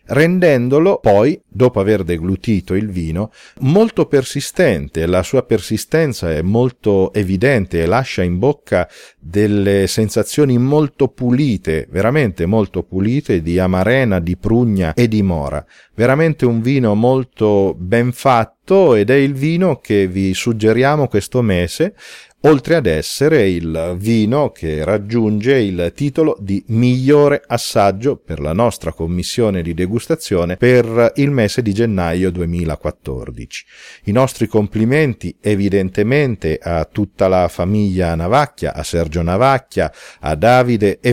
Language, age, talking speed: Italian, 40-59, 125 wpm